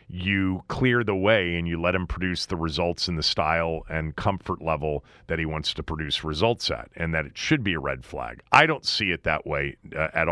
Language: English